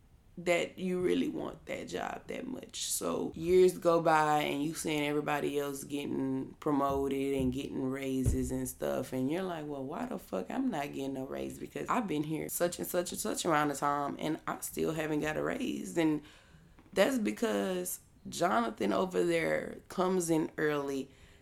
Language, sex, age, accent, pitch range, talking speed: English, female, 20-39, American, 140-185 Hz, 180 wpm